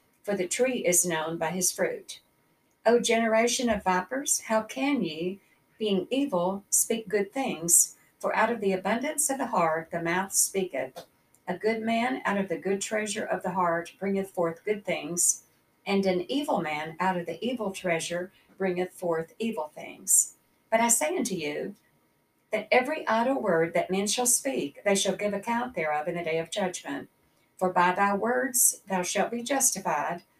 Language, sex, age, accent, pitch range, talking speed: English, female, 60-79, American, 175-230 Hz, 180 wpm